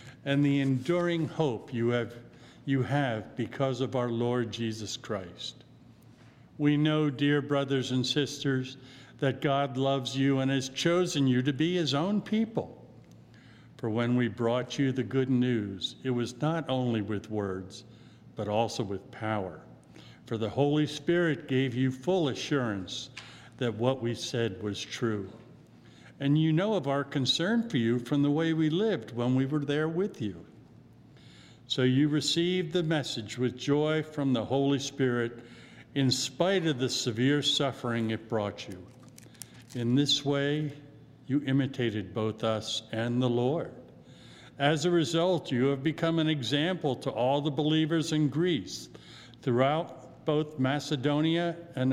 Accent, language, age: American, English, 50-69